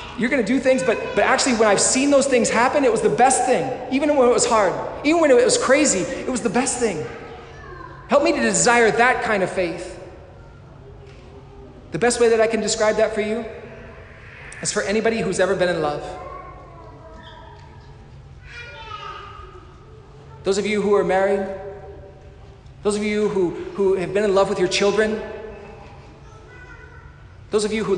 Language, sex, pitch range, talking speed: English, male, 195-240 Hz, 175 wpm